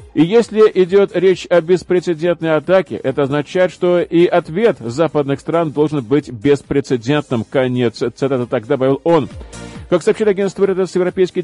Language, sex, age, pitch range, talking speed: Russian, male, 40-59, 155-180 Hz, 140 wpm